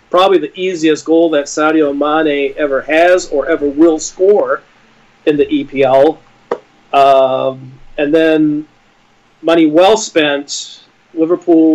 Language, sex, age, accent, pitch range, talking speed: English, male, 40-59, American, 145-175 Hz, 115 wpm